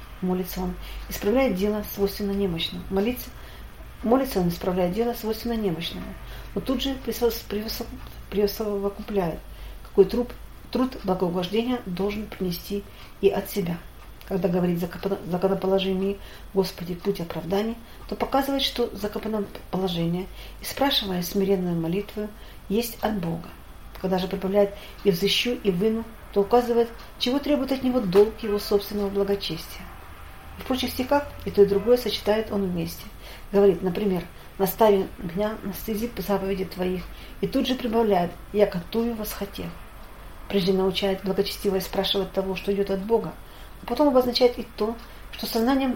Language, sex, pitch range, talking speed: Russian, female, 190-225 Hz, 140 wpm